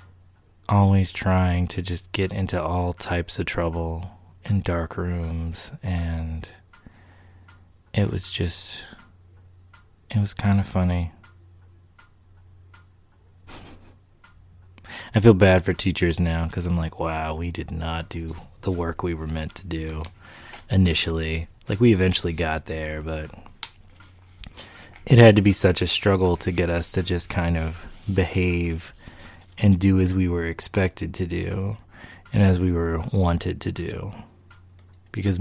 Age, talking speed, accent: 20-39, 135 wpm, American